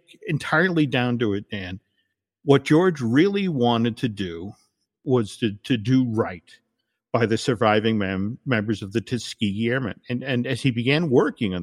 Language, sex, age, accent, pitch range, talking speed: English, male, 50-69, American, 115-150 Hz, 165 wpm